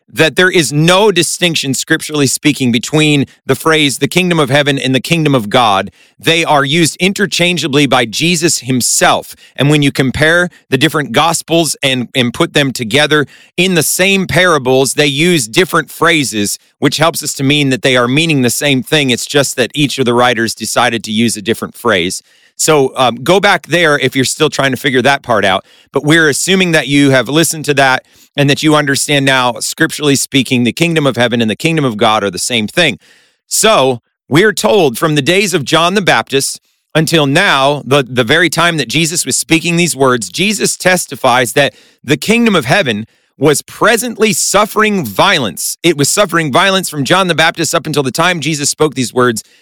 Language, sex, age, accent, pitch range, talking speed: English, male, 40-59, American, 130-170 Hz, 195 wpm